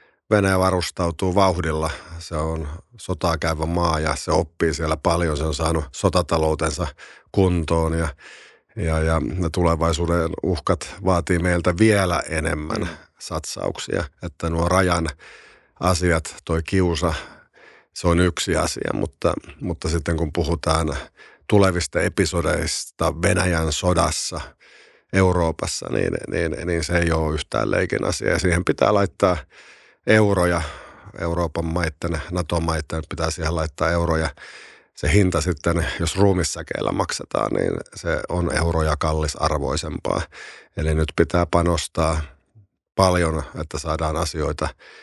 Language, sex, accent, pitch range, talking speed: Finnish, male, native, 80-90 Hz, 115 wpm